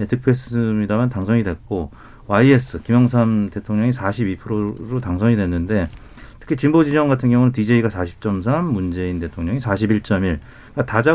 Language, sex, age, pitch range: Korean, male, 40-59, 105-130 Hz